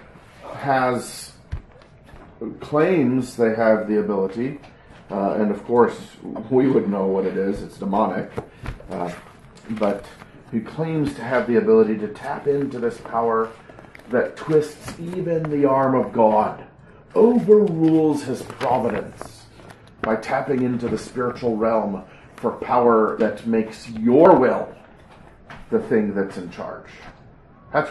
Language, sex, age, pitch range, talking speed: English, male, 40-59, 110-140 Hz, 125 wpm